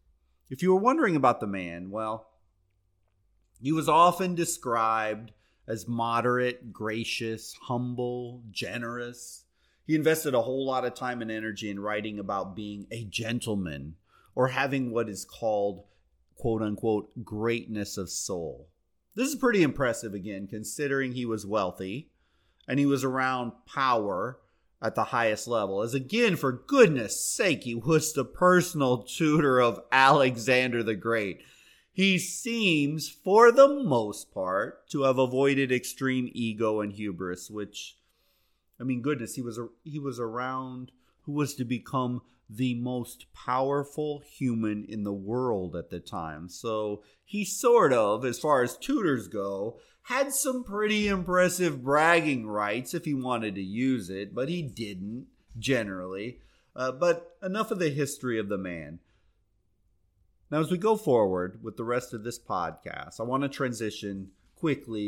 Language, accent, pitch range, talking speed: English, American, 105-145 Hz, 145 wpm